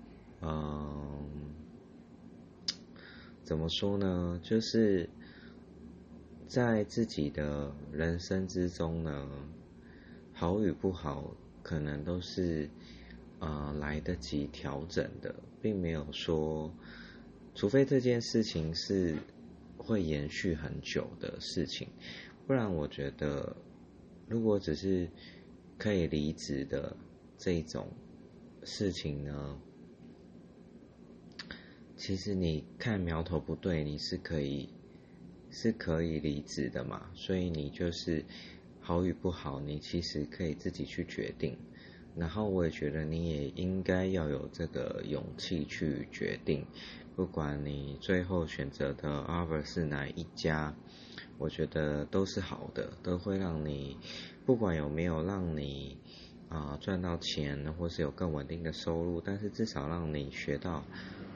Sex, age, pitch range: male, 30-49, 75-90 Hz